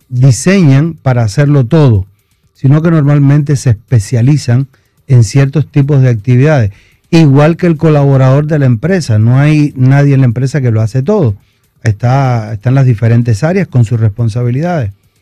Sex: male